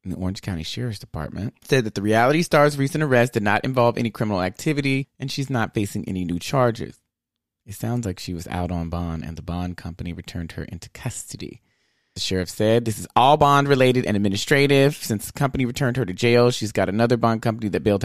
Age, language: 30-49, English